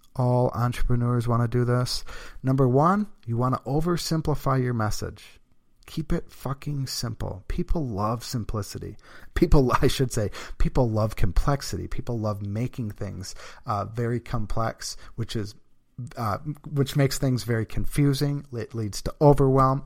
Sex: male